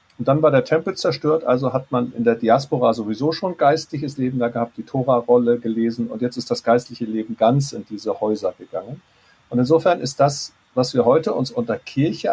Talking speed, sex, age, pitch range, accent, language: 210 wpm, male, 50-69, 115-140 Hz, German, German